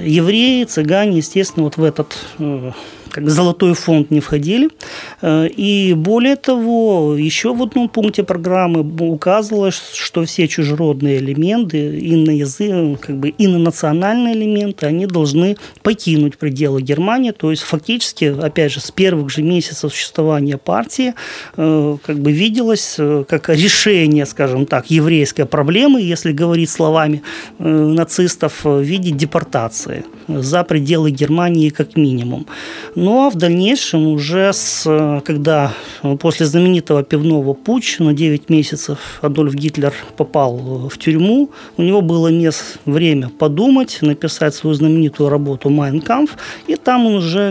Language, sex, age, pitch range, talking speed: Russian, male, 30-49, 150-190 Hz, 125 wpm